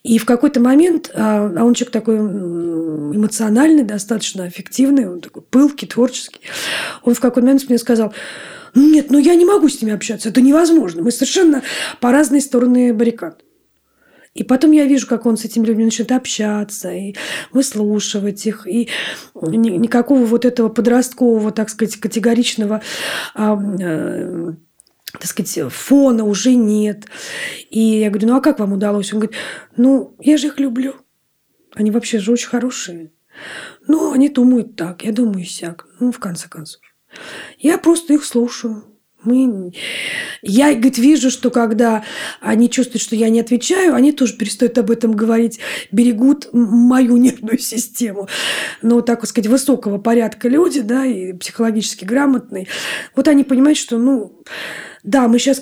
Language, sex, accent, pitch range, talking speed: Russian, female, native, 215-265 Hz, 150 wpm